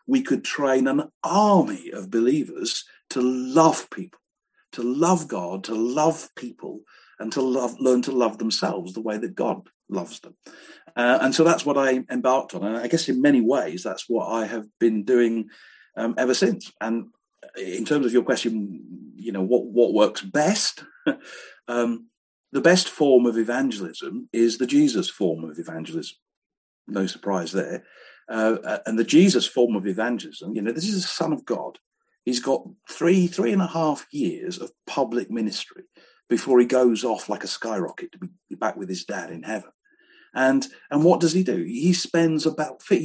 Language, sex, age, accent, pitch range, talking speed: English, male, 50-69, British, 120-200 Hz, 180 wpm